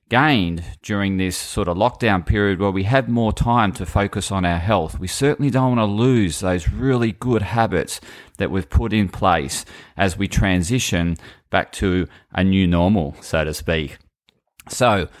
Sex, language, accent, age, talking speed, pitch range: male, English, Australian, 30-49, 175 wpm, 90-110 Hz